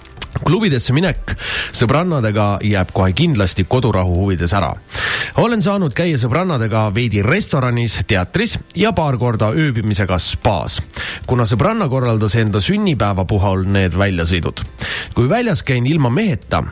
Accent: Finnish